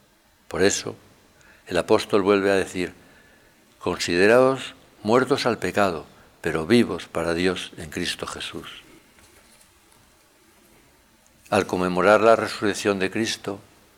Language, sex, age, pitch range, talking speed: Spanish, male, 60-79, 85-105 Hz, 105 wpm